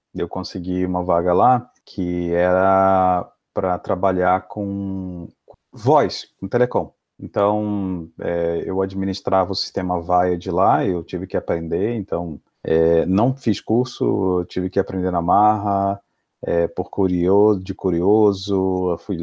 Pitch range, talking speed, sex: 90-105 Hz, 135 wpm, male